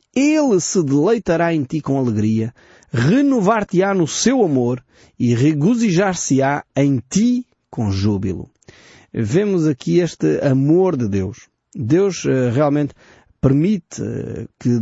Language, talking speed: Portuguese, 110 wpm